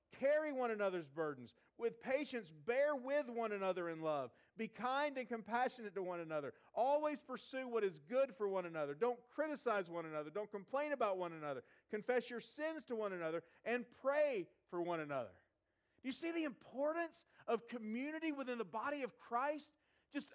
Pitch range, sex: 195-275 Hz, male